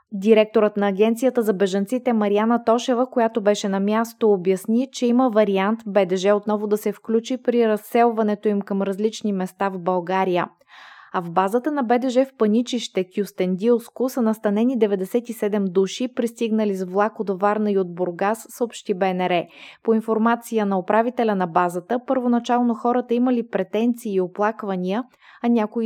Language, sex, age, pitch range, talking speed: Bulgarian, female, 20-39, 200-240 Hz, 150 wpm